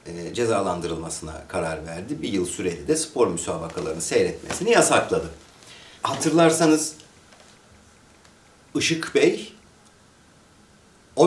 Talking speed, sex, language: 80 wpm, male, Turkish